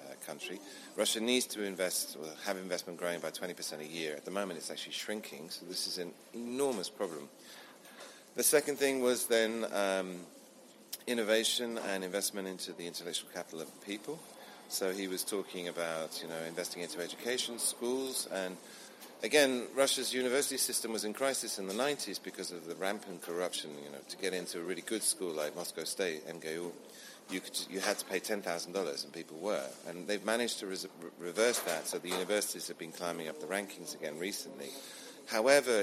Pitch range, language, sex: 85-115 Hz, English, male